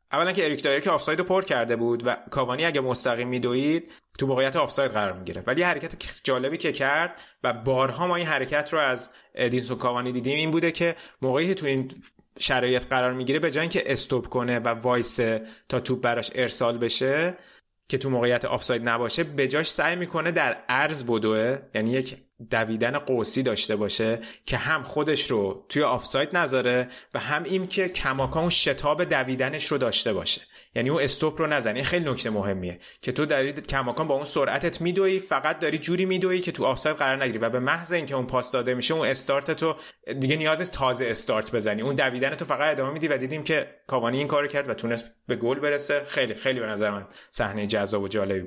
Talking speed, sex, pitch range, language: 205 wpm, male, 120-155 Hz, Persian